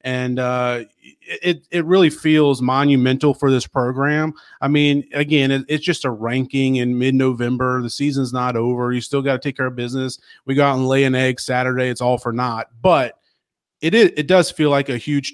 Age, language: 30-49, English